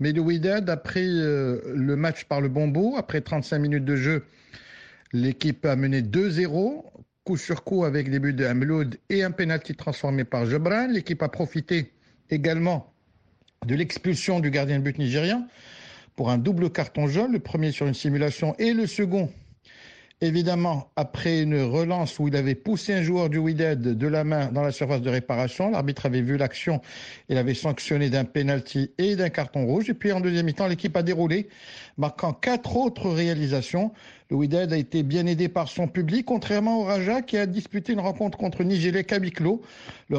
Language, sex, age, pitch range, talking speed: French, male, 60-79, 145-180 Hz, 180 wpm